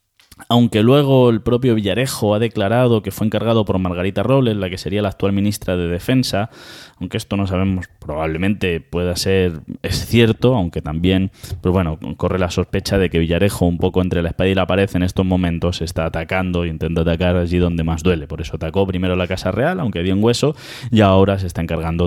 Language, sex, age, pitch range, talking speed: Spanish, male, 20-39, 90-115 Hz, 205 wpm